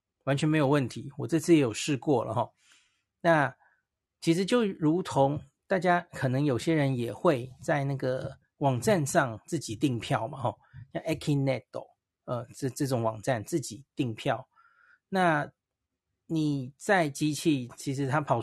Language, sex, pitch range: Chinese, male, 120-155 Hz